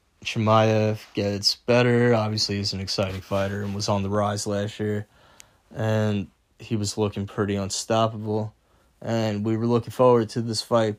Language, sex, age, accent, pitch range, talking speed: English, male, 20-39, American, 105-120 Hz, 160 wpm